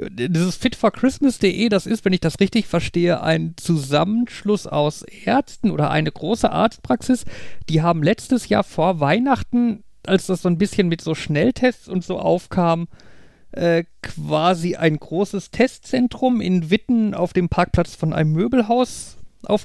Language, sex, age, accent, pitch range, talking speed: German, male, 50-69, German, 165-225 Hz, 145 wpm